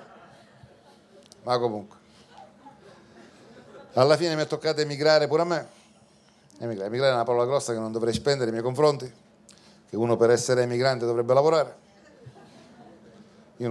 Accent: native